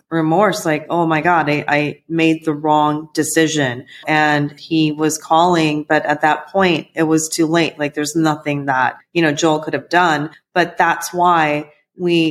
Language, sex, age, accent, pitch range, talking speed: English, female, 30-49, American, 155-180 Hz, 180 wpm